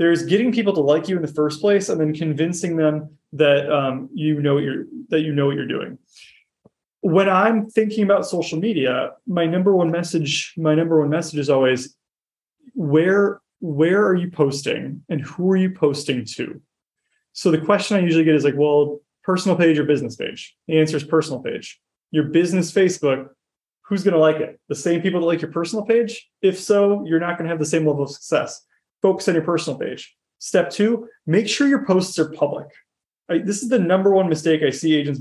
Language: English